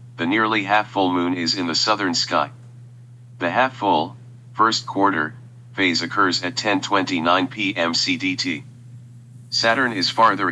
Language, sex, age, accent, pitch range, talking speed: English, male, 40-59, American, 100-125 Hz, 115 wpm